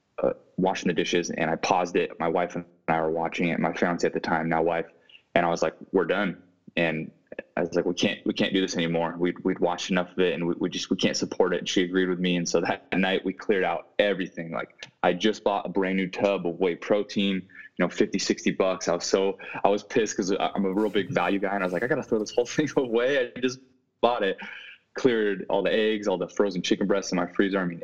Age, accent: 20-39, American